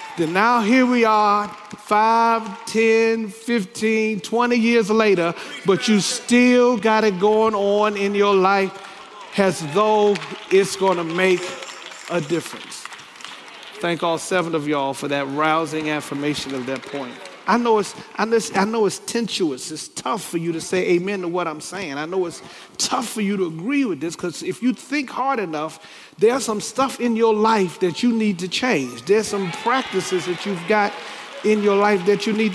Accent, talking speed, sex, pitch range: American, 180 wpm, male, 190-255 Hz